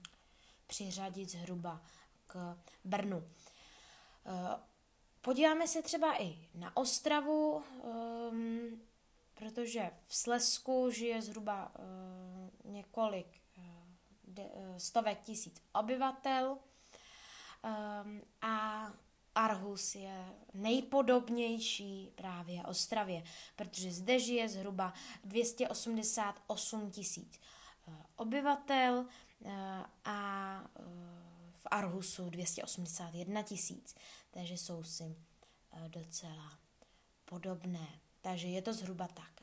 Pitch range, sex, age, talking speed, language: 180-230 Hz, female, 20-39, 75 wpm, Czech